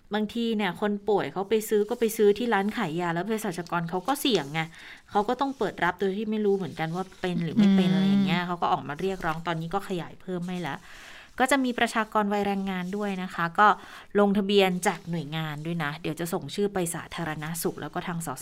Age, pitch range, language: 20-39, 170-225 Hz, Thai